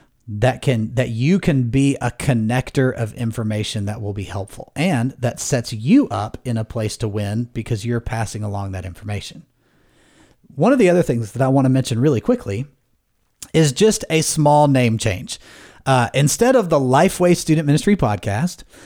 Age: 30-49